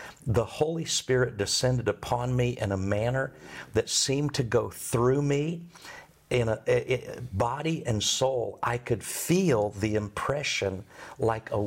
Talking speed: 150 wpm